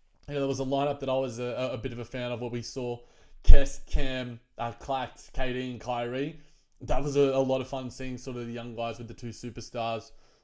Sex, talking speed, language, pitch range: male, 245 wpm, English, 120-140 Hz